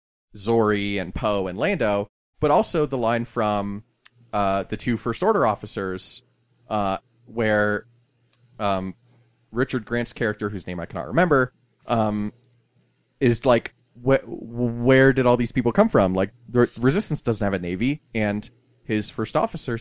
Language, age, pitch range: English, 30-49, 100-125 Hz